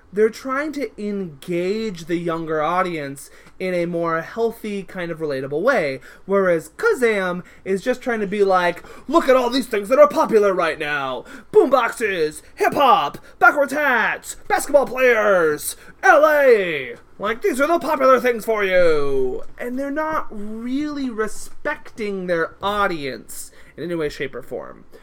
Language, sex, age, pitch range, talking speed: English, male, 20-39, 175-260 Hz, 150 wpm